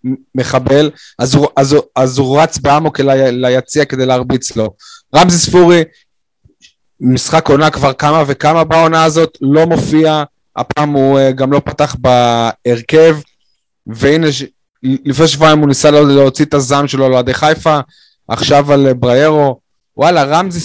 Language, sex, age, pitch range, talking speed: Hebrew, male, 20-39, 125-155 Hz, 140 wpm